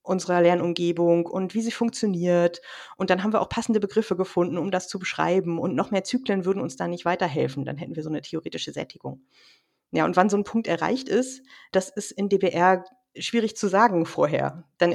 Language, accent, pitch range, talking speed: German, German, 180-220 Hz, 205 wpm